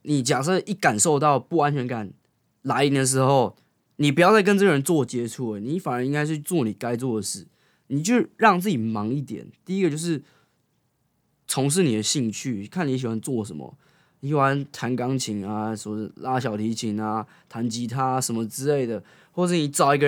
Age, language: 20-39, Chinese